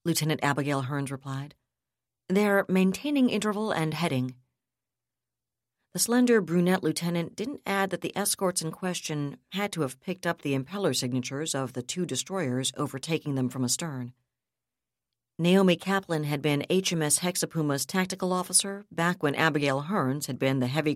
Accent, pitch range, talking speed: American, 130-180 Hz, 150 wpm